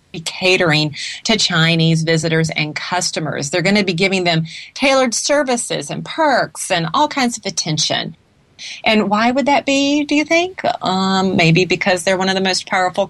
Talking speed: 180 wpm